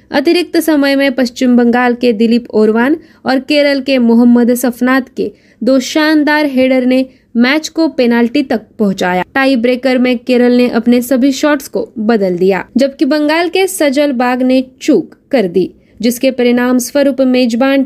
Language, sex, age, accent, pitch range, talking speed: Marathi, female, 20-39, native, 240-290 Hz, 160 wpm